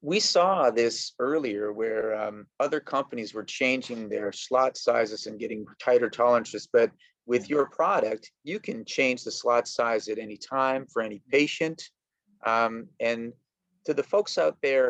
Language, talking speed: English, 160 wpm